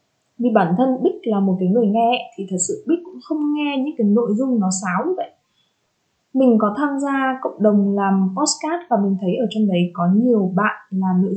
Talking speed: 225 wpm